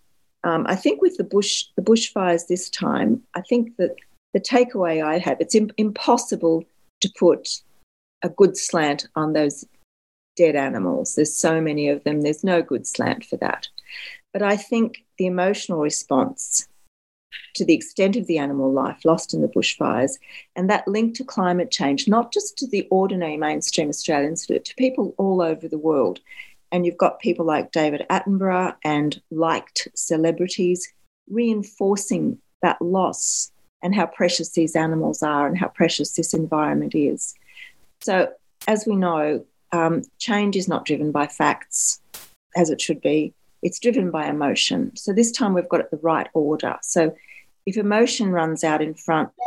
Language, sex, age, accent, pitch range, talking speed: English, female, 40-59, Australian, 155-210 Hz, 165 wpm